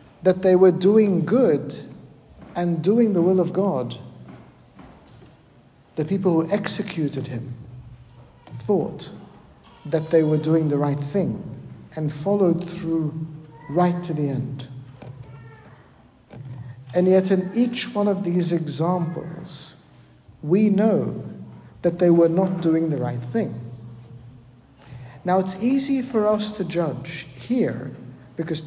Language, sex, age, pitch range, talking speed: English, male, 60-79, 135-190 Hz, 120 wpm